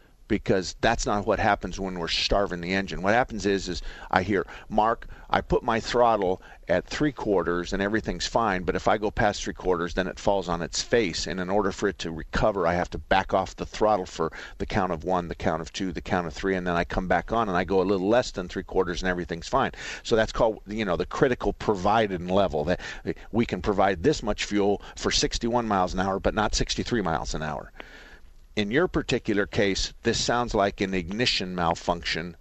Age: 50-69